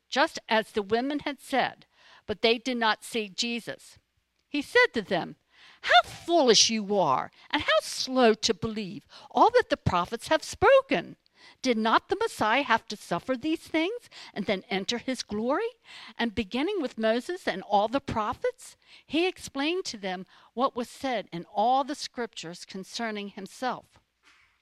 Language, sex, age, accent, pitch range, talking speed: English, female, 50-69, American, 205-290 Hz, 160 wpm